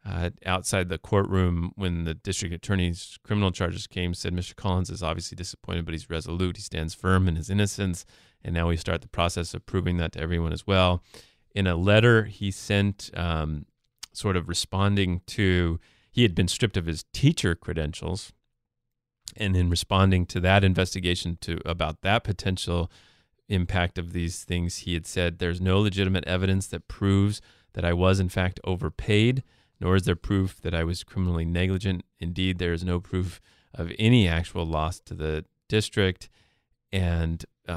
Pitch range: 85-105 Hz